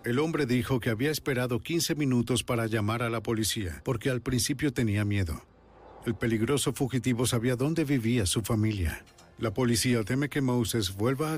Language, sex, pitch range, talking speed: Spanish, male, 105-130 Hz, 175 wpm